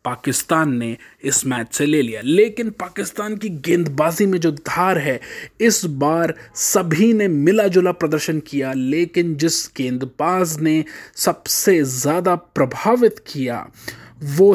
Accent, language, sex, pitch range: native, Hindi, male, 140-190 Hz